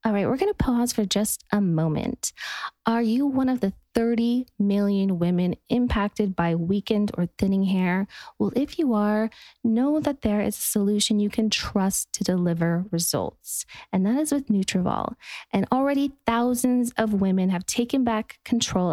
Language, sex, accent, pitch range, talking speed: English, female, American, 185-230 Hz, 170 wpm